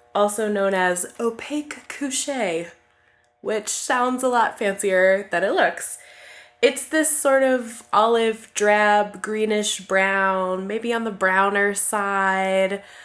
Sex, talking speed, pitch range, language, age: female, 120 wpm, 185-240 Hz, English, 10-29